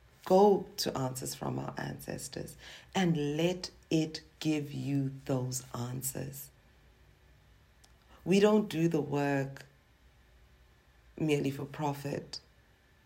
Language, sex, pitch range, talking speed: English, female, 125-145 Hz, 95 wpm